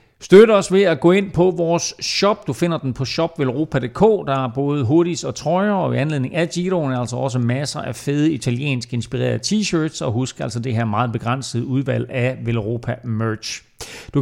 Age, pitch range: 40-59, 120-165 Hz